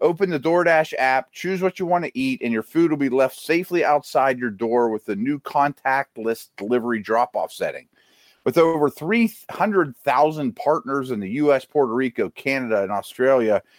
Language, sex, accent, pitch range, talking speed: English, male, American, 120-170 Hz, 175 wpm